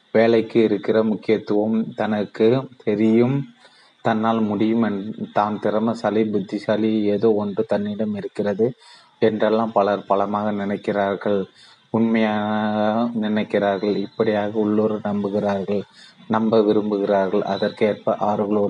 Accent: native